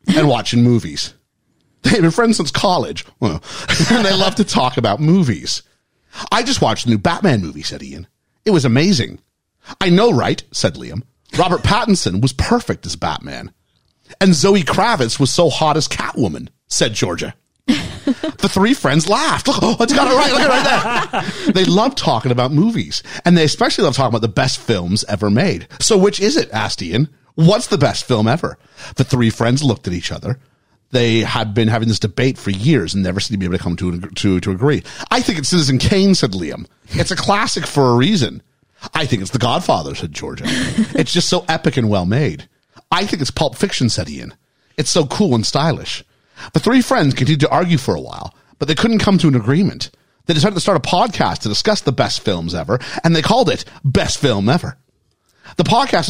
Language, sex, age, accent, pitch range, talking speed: English, male, 40-59, American, 115-185 Hz, 205 wpm